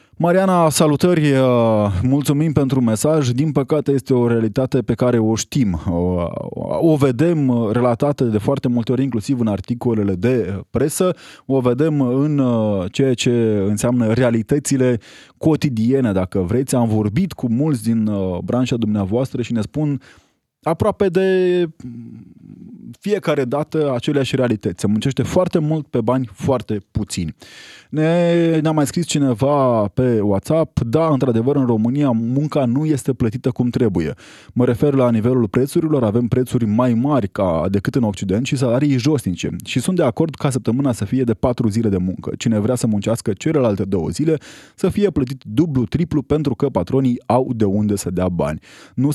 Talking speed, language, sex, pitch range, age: 155 wpm, Romanian, male, 115-145 Hz, 20-39